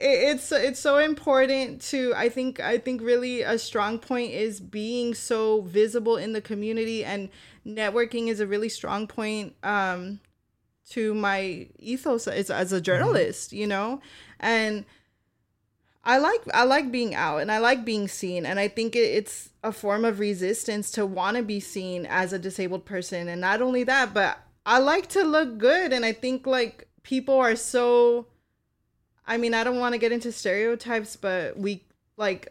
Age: 20-39